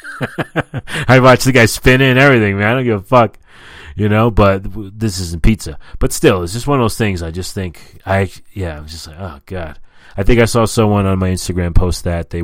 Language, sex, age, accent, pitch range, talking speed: English, male, 30-49, American, 85-110 Hz, 235 wpm